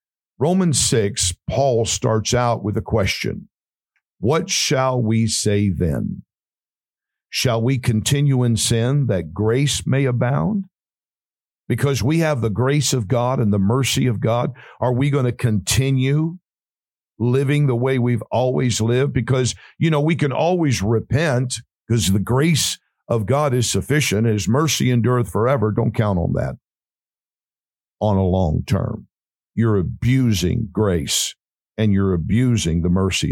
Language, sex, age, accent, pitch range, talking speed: English, male, 50-69, American, 105-130 Hz, 140 wpm